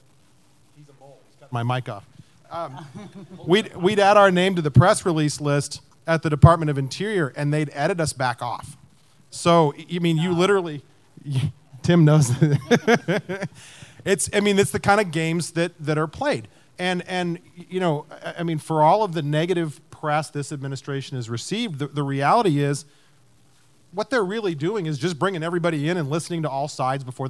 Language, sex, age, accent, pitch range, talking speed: English, male, 40-59, American, 135-165 Hz, 175 wpm